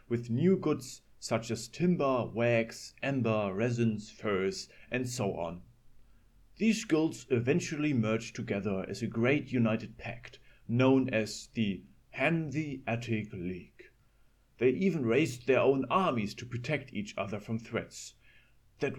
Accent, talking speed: German, 130 wpm